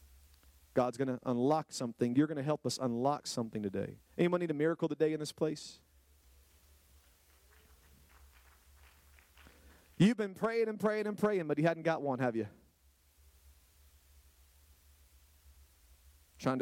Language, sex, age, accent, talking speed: English, male, 40-59, American, 130 wpm